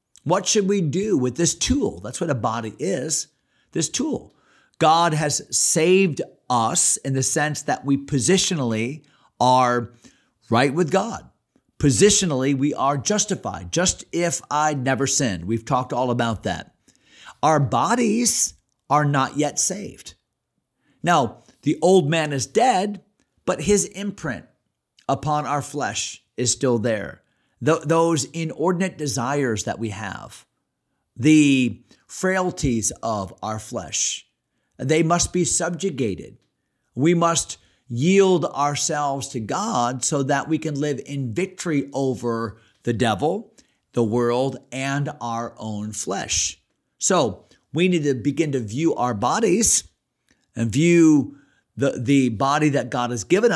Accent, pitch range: American, 120-165 Hz